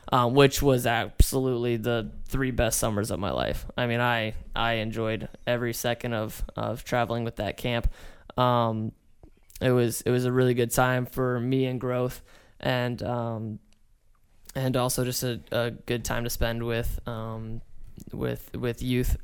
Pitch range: 115-125 Hz